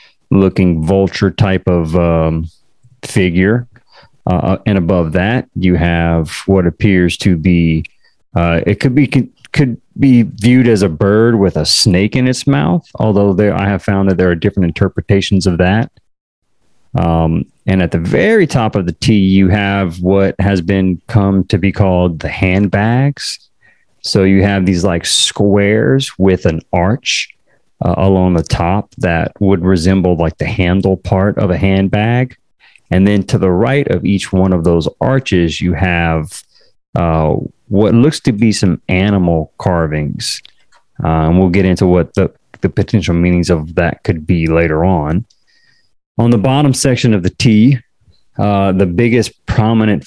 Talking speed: 160 wpm